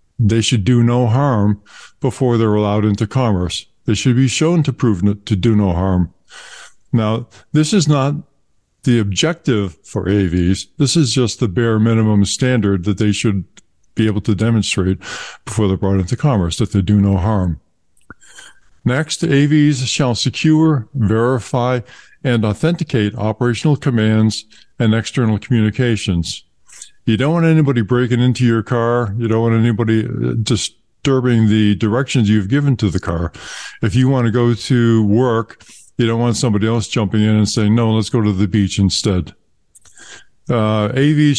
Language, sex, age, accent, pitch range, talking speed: English, male, 50-69, American, 105-125 Hz, 160 wpm